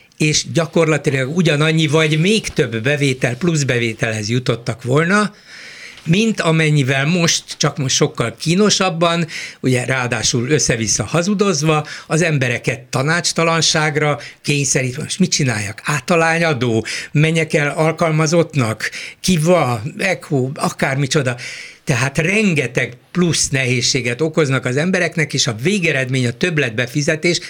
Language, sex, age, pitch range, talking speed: Hungarian, male, 60-79, 125-165 Hz, 105 wpm